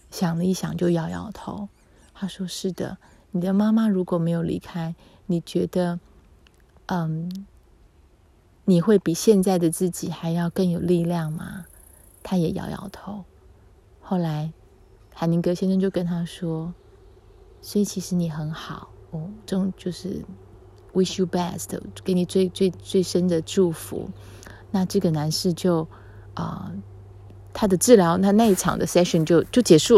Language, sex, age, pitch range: Chinese, female, 20-39, 160-200 Hz